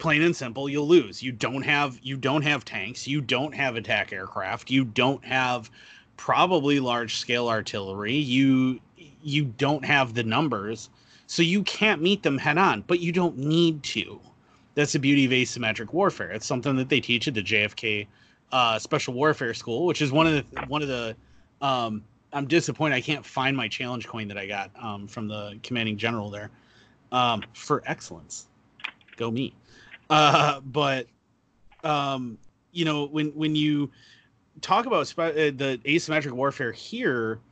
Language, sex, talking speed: English, male, 165 wpm